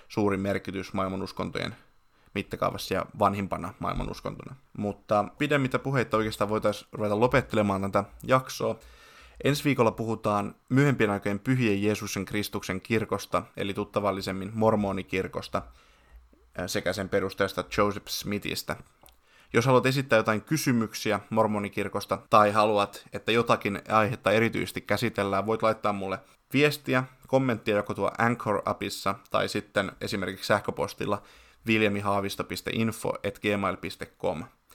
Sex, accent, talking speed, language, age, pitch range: male, native, 105 wpm, Finnish, 20-39, 100-115 Hz